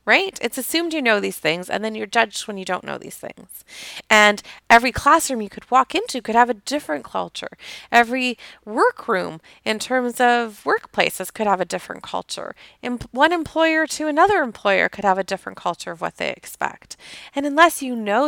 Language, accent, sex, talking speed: English, American, female, 190 wpm